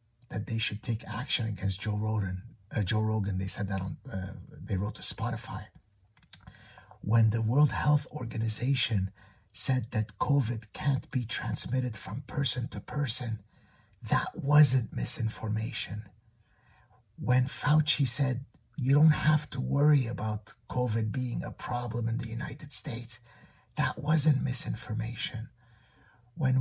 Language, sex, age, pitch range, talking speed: English, male, 50-69, 110-140 Hz, 130 wpm